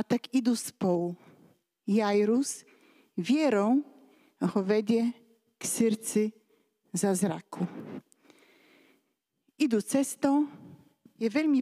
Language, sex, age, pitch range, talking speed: Slovak, female, 40-59, 210-260 Hz, 85 wpm